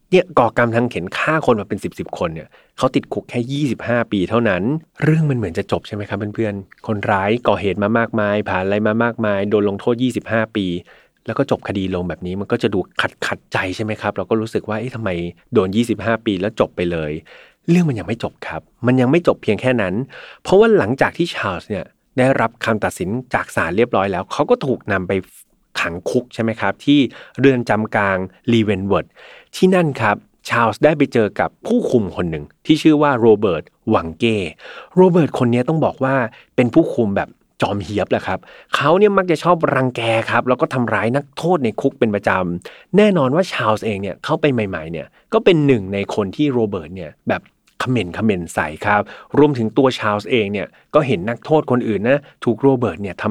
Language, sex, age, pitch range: Thai, male, 30-49, 105-135 Hz